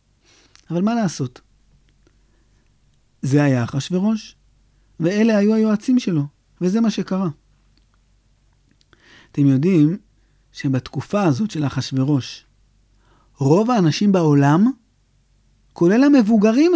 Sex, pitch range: male, 135-225 Hz